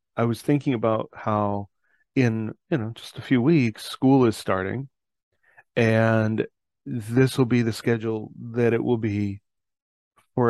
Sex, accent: male, American